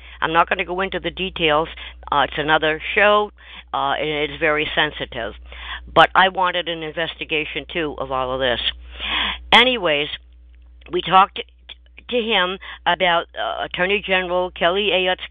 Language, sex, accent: English, female, American